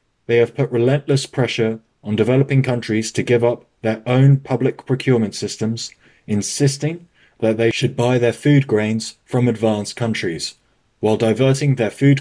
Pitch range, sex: 110-135 Hz, male